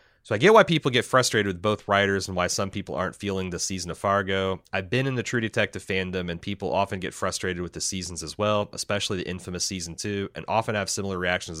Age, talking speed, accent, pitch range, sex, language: 30-49, 245 wpm, American, 95-125 Hz, male, English